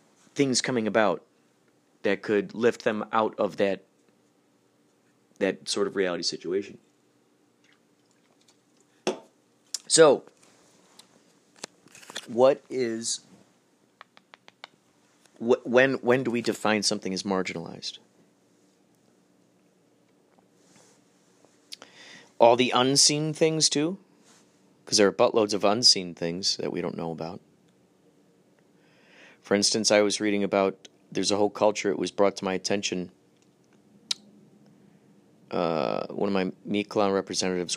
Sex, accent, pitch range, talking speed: male, American, 90-105 Hz, 105 wpm